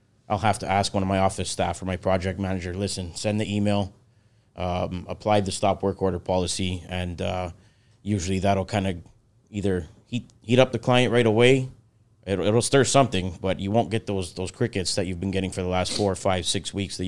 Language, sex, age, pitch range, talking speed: English, male, 30-49, 95-115 Hz, 220 wpm